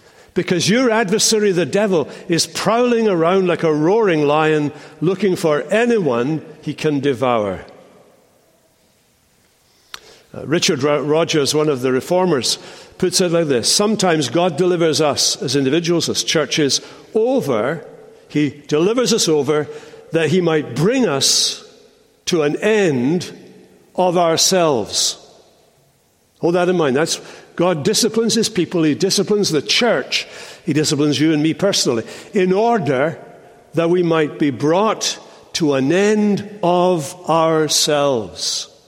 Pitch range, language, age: 150-195 Hz, English, 60-79